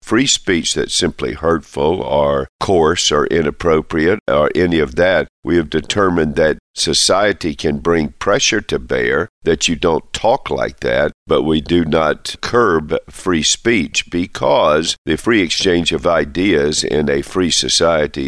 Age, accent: 50-69, American